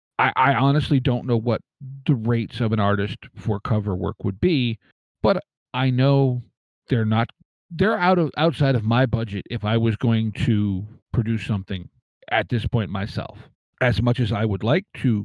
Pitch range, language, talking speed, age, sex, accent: 110-130 Hz, English, 175 wpm, 40-59, male, American